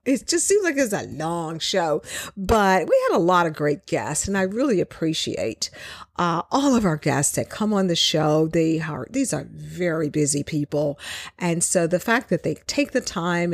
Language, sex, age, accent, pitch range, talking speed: English, female, 50-69, American, 155-215 Hz, 205 wpm